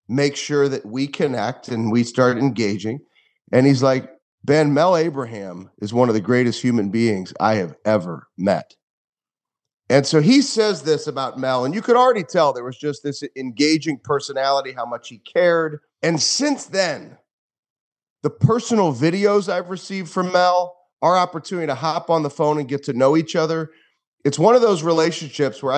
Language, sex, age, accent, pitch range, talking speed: English, male, 40-59, American, 135-180 Hz, 180 wpm